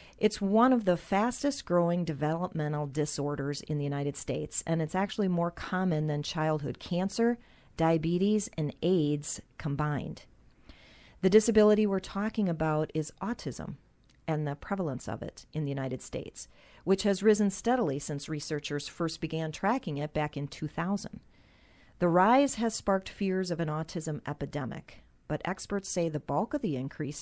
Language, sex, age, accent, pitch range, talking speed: English, female, 40-59, American, 150-195 Hz, 155 wpm